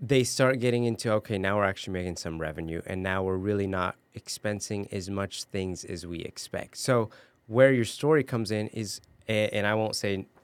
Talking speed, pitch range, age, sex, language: 195 wpm, 95-120 Hz, 30-49, male, English